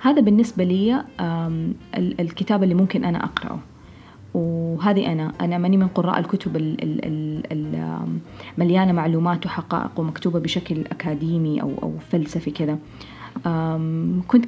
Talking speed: 110 wpm